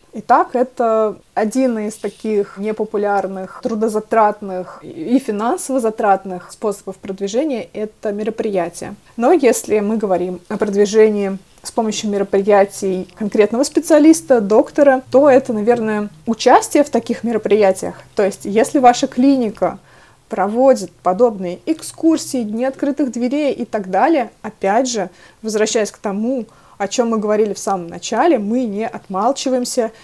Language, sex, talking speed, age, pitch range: Russian, female, 125 wpm, 20-39, 200-245 Hz